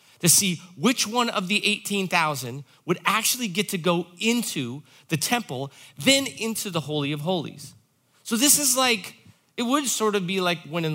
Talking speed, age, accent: 175 wpm, 30-49, American